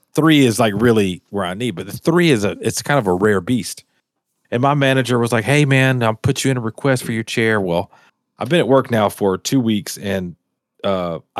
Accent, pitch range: American, 105-140 Hz